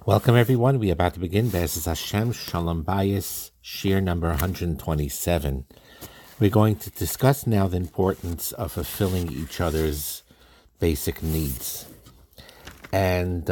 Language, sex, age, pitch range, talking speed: English, male, 60-79, 80-100 Hz, 130 wpm